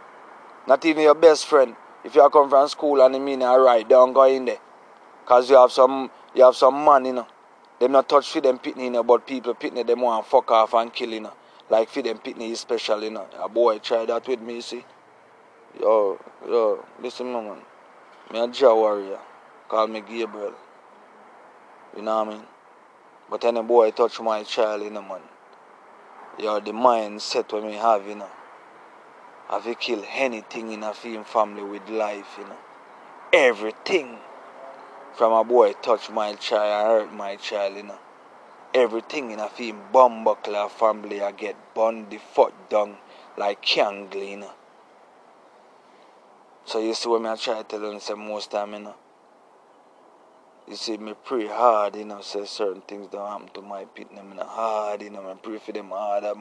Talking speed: 185 wpm